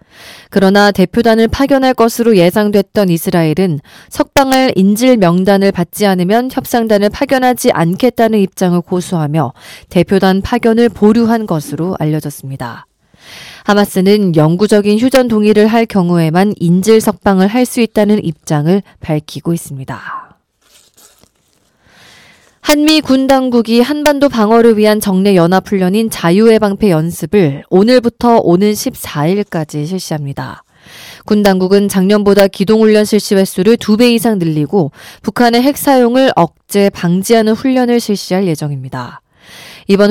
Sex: female